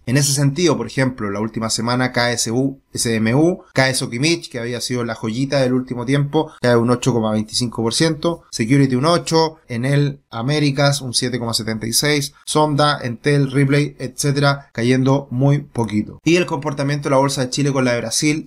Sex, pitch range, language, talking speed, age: male, 115-140 Hz, Spanish, 155 wpm, 20-39